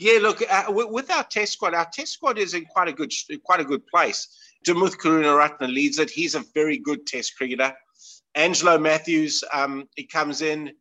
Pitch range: 150-195 Hz